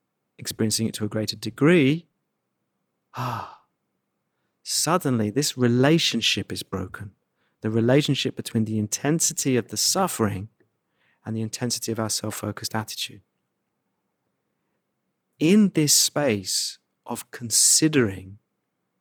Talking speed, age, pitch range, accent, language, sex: 100 wpm, 30-49, 110-140 Hz, British, English, male